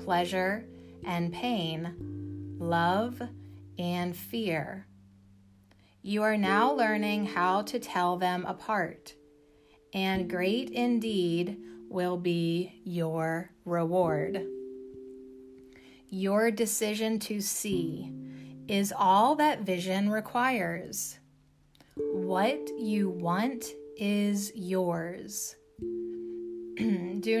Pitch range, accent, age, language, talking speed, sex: 145-210 Hz, American, 30-49, English, 80 wpm, female